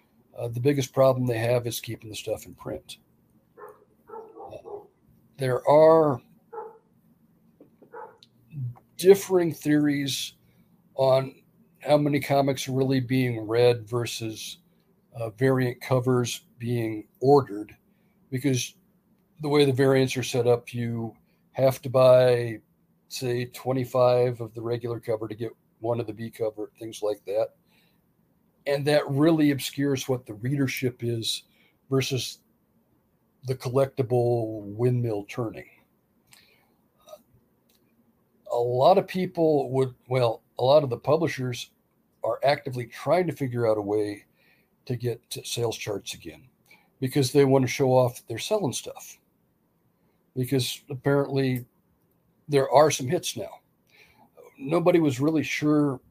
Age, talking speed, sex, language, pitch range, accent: 50-69, 125 wpm, male, English, 120-150 Hz, American